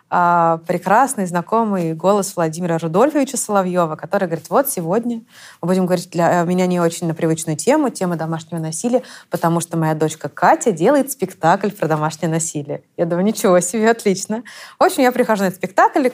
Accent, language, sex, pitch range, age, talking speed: native, Russian, female, 170-225 Hz, 20-39, 165 wpm